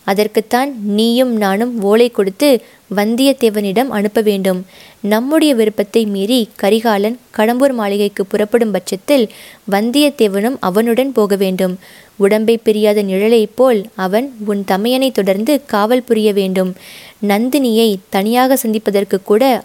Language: Tamil